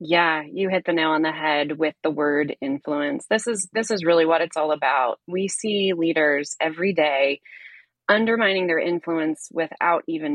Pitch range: 165-225 Hz